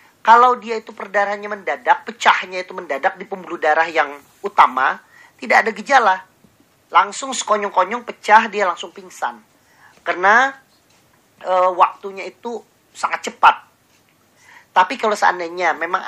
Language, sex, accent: Indonesian, male, native